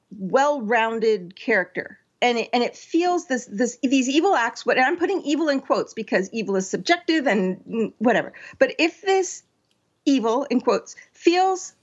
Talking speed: 160 wpm